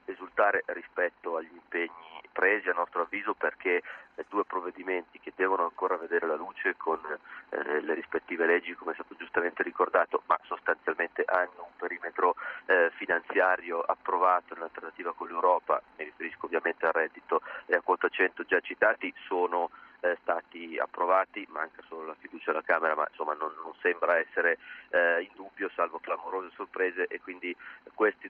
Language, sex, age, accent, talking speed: Italian, male, 30-49, native, 155 wpm